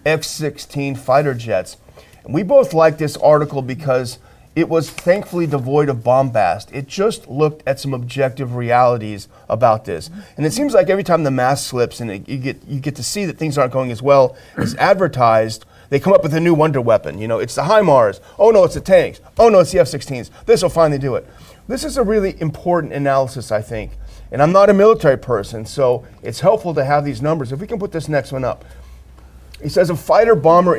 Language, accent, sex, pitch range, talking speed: English, American, male, 125-165 Hz, 220 wpm